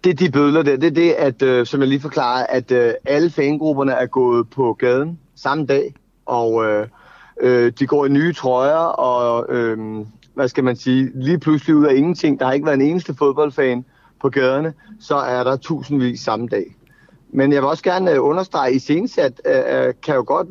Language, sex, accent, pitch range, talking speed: Danish, male, native, 130-170 Hz, 200 wpm